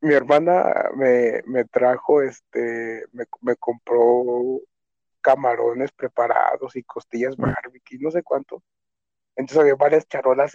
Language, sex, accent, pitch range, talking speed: Spanish, male, Mexican, 120-155 Hz, 120 wpm